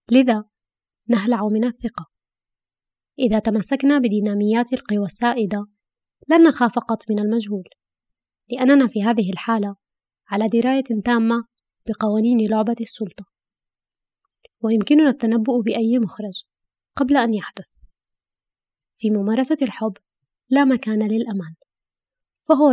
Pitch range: 210-245 Hz